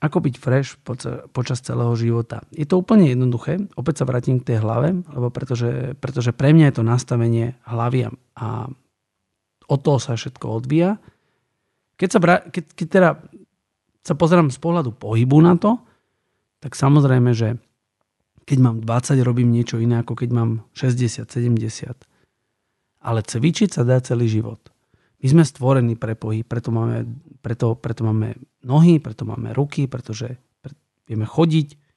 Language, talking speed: Slovak, 145 wpm